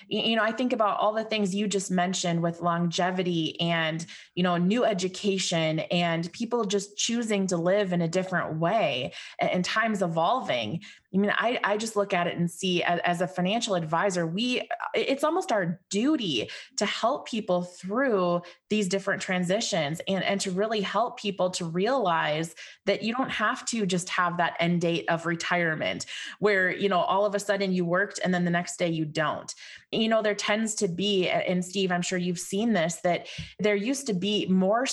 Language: English